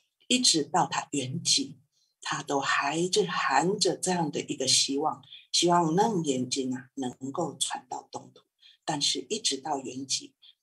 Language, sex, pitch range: Chinese, female, 145-230 Hz